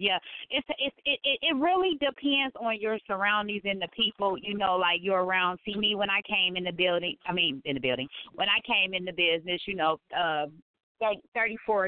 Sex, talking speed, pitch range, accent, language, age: female, 205 wpm, 165-205 Hz, American, English, 30-49